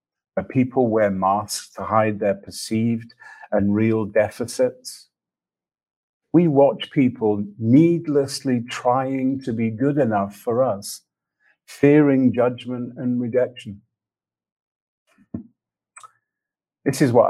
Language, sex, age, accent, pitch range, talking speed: English, male, 50-69, British, 105-130 Hz, 100 wpm